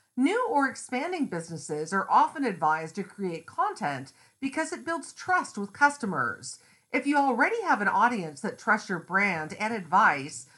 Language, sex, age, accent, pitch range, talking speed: English, female, 50-69, American, 170-265 Hz, 160 wpm